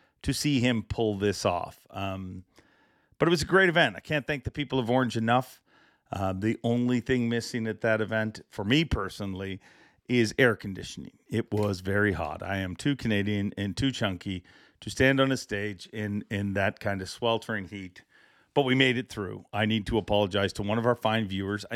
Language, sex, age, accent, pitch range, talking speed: English, male, 40-59, American, 100-125 Hz, 200 wpm